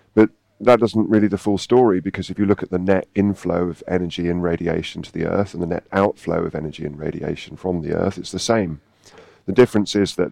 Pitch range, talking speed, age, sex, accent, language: 90-110 Hz, 225 wpm, 40-59, male, British, English